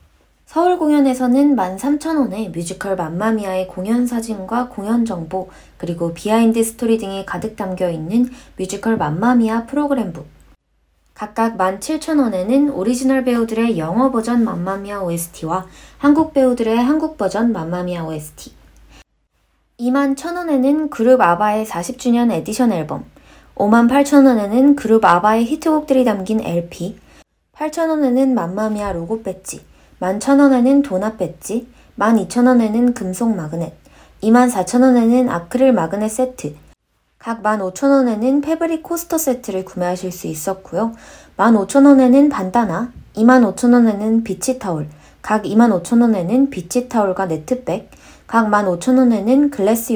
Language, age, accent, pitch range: Korean, 20-39, native, 190-260 Hz